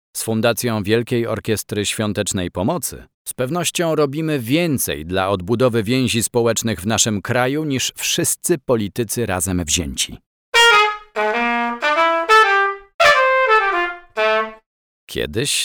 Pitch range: 95-150 Hz